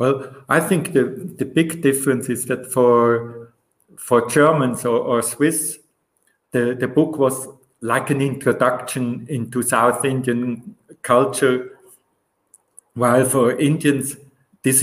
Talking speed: 120 wpm